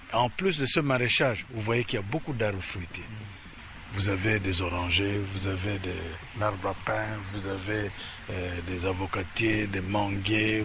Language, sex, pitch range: French, male, 105-140 Hz